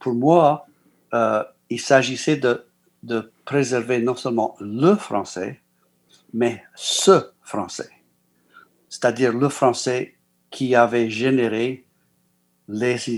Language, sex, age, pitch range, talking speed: French, male, 60-79, 115-150 Hz, 100 wpm